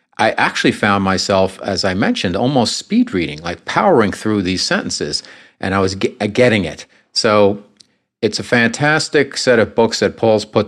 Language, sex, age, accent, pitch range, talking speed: English, male, 50-69, American, 95-120 Hz, 170 wpm